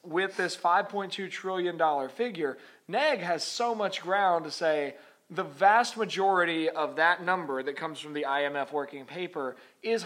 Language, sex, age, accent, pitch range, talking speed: English, male, 20-39, American, 150-190 Hz, 160 wpm